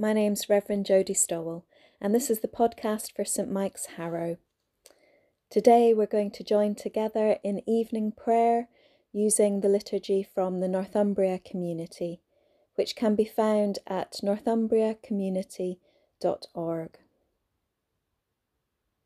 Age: 30-49